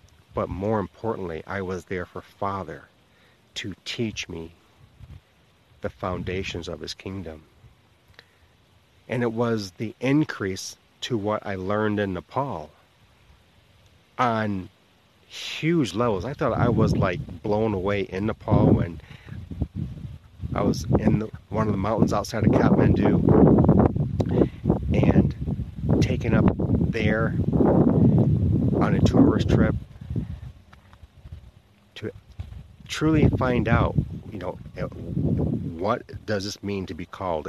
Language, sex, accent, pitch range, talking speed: English, male, American, 90-115 Hz, 110 wpm